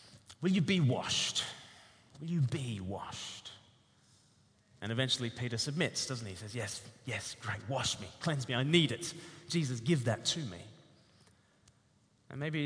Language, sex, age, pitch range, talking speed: English, male, 30-49, 110-150 Hz, 155 wpm